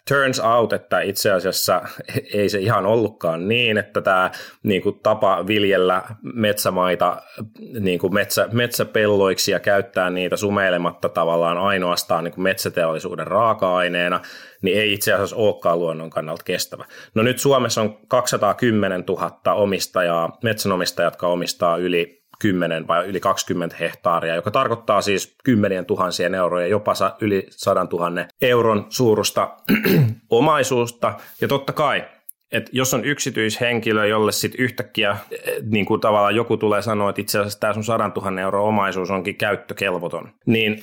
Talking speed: 130 wpm